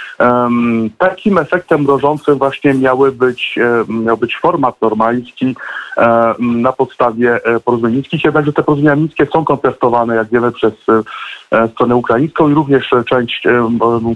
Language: Polish